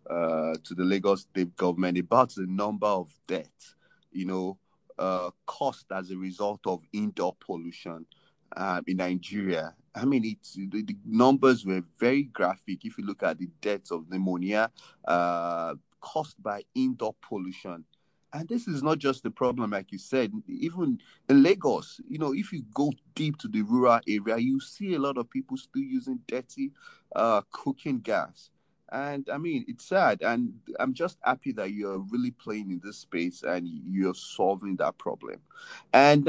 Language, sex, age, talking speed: English, male, 30-49, 170 wpm